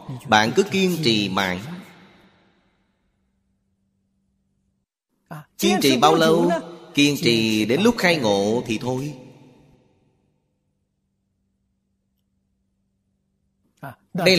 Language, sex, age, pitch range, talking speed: Vietnamese, male, 30-49, 100-135 Hz, 75 wpm